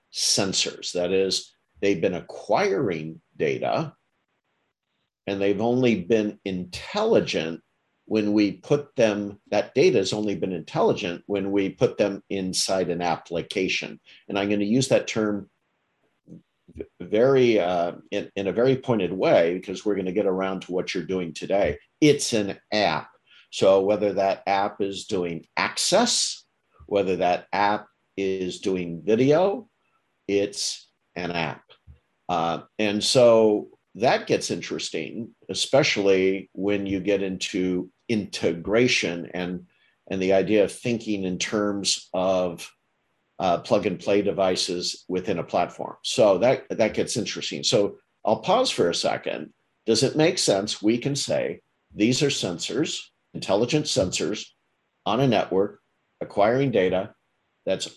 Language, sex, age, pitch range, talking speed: English, male, 50-69, 95-105 Hz, 135 wpm